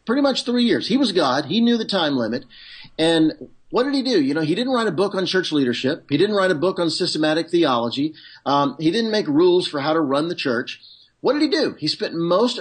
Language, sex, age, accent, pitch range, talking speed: English, male, 50-69, American, 140-215 Hz, 250 wpm